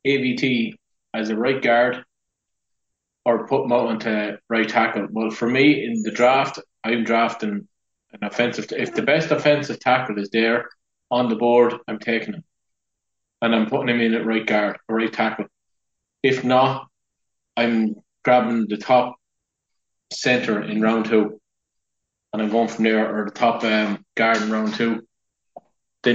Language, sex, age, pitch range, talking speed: English, male, 20-39, 110-130 Hz, 165 wpm